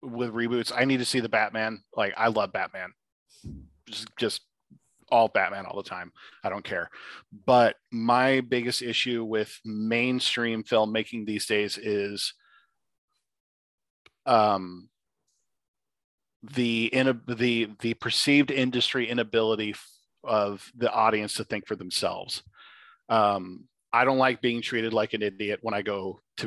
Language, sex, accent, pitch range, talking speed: English, male, American, 105-120 Hz, 130 wpm